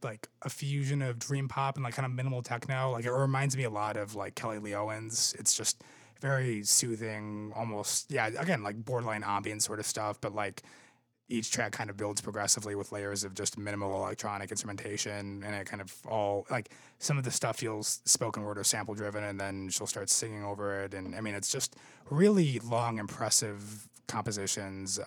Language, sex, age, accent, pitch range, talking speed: English, male, 20-39, American, 100-125 Hz, 200 wpm